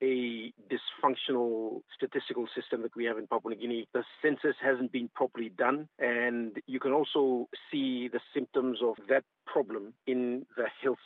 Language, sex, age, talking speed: English, male, 50-69, 165 wpm